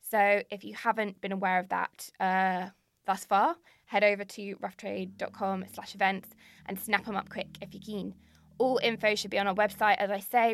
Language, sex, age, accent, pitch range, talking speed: English, female, 20-39, British, 195-220 Hz, 200 wpm